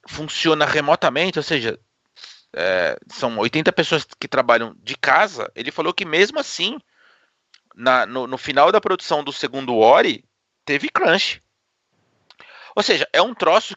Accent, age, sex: Brazilian, 30-49, male